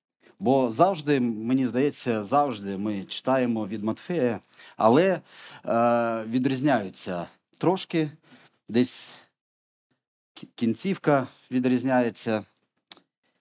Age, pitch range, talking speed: 30-49, 105-145 Hz, 70 wpm